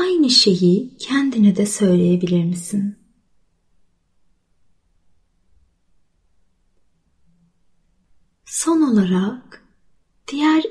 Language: Turkish